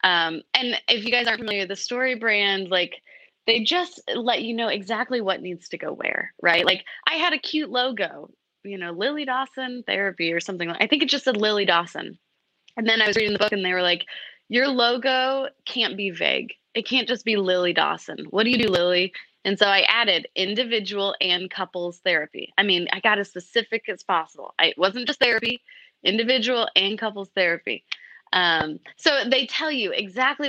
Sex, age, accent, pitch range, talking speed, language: female, 20-39, American, 190-255 Hz, 200 wpm, English